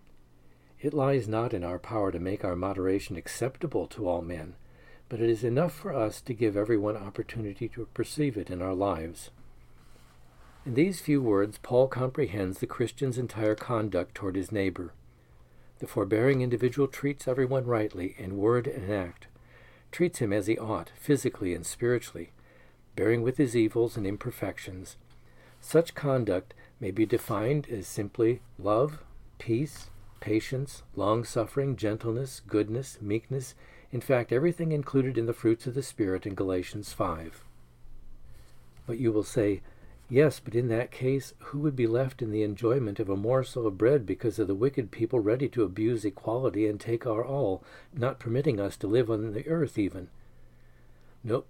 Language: English